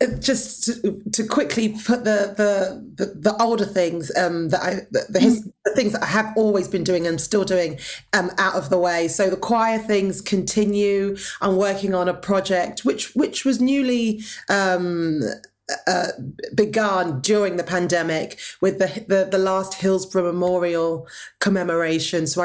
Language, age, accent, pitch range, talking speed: English, 40-59, British, 170-200 Hz, 155 wpm